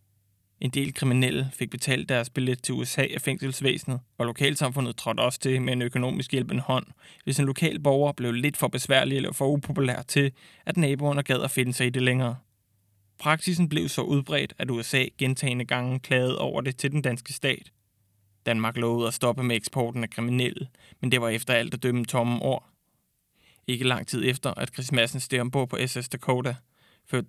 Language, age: Danish, 20-39